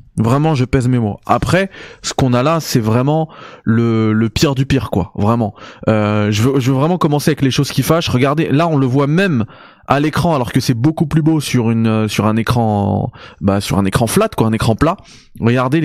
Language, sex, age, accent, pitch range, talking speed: French, male, 20-39, French, 110-145 Hz, 225 wpm